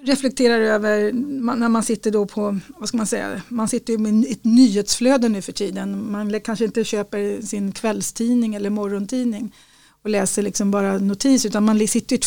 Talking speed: 180 wpm